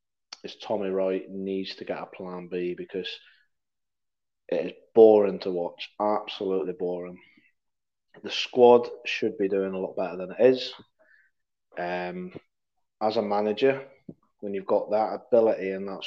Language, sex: English, male